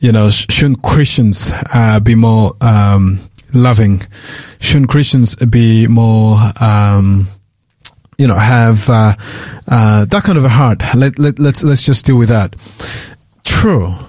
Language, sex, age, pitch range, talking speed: English, male, 30-49, 115-140 Hz, 140 wpm